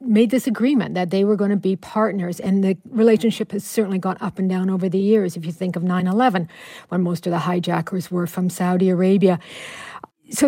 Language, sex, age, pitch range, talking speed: English, female, 50-69, 185-225 Hz, 210 wpm